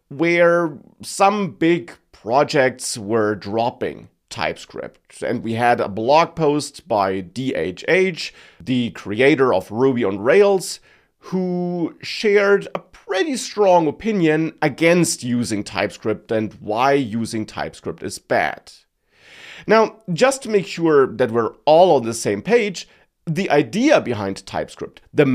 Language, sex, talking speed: English, male, 125 wpm